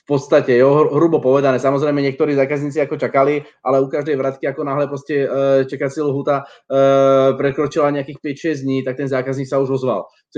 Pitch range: 130-140 Hz